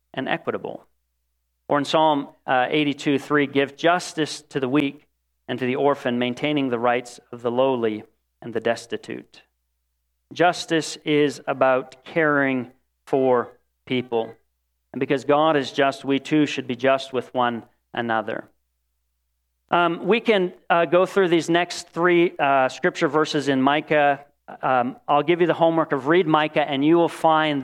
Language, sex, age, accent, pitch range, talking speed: English, male, 40-59, American, 130-185 Hz, 155 wpm